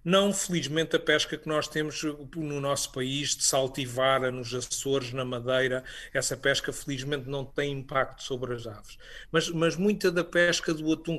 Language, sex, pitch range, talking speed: Portuguese, male, 135-170 Hz, 170 wpm